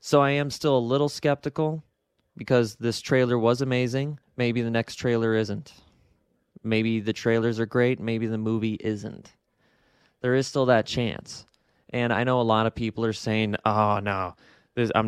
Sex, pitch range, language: male, 105-125 Hz, English